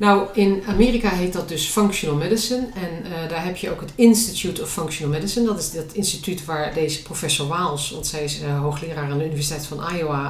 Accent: Dutch